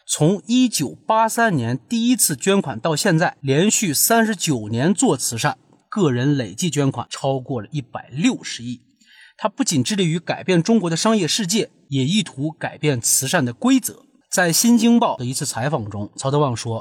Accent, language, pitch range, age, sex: native, Chinese, 135-210 Hz, 30-49, male